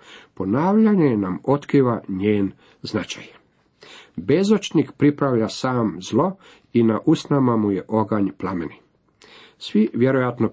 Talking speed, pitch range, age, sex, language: 105 wpm, 110-150 Hz, 50-69, male, Croatian